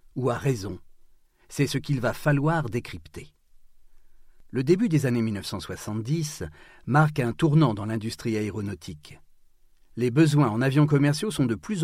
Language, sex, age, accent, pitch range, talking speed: French, male, 40-59, French, 105-150 Hz, 140 wpm